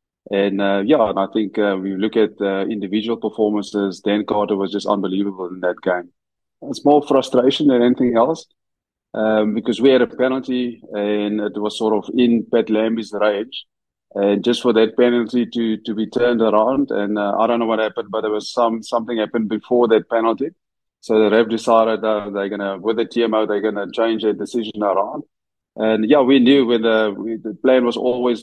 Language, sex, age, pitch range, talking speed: English, male, 20-39, 100-115 Hz, 210 wpm